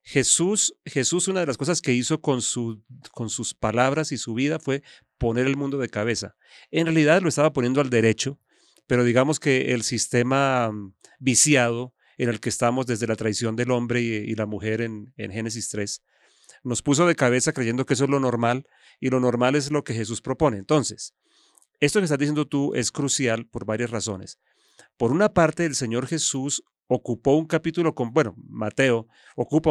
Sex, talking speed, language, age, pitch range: male, 190 wpm, English, 40-59, 120-150 Hz